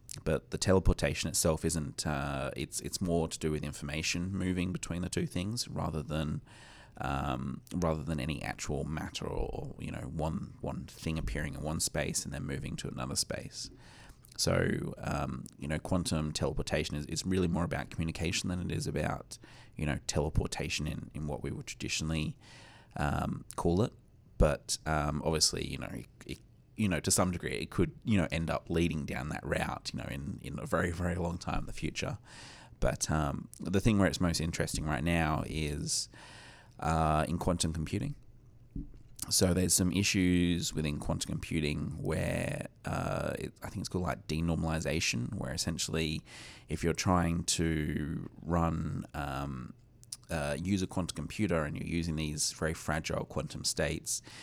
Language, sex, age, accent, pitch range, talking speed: English, male, 30-49, Australian, 75-90 Hz, 170 wpm